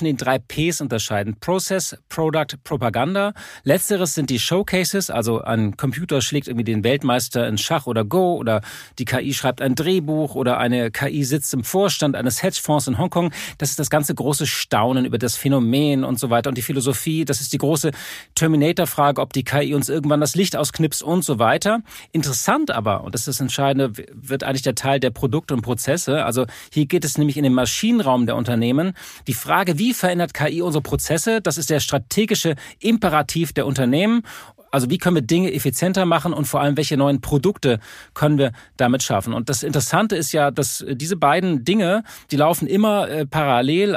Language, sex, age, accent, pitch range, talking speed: German, male, 40-59, German, 130-165 Hz, 190 wpm